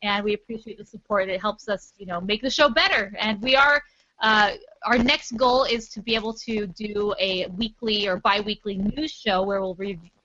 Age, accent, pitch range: 20-39, American, 195-245 Hz